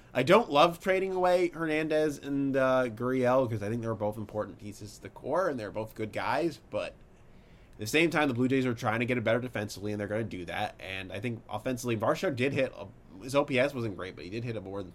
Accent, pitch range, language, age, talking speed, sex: American, 105-130 Hz, English, 20-39, 255 wpm, male